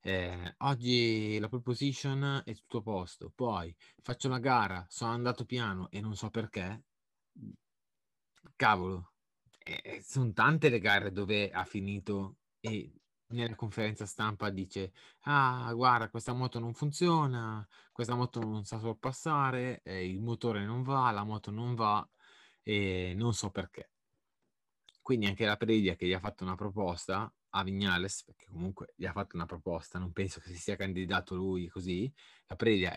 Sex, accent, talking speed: male, native, 155 wpm